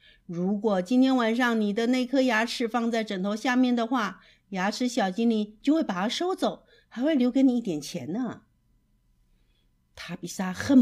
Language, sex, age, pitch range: Chinese, female, 50-69, 190-275 Hz